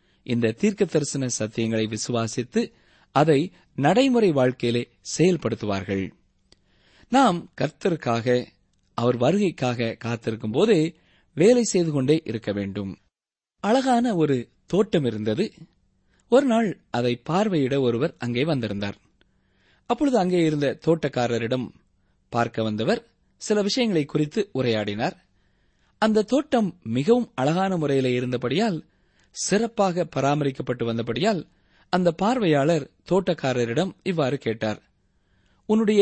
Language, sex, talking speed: Tamil, male, 90 wpm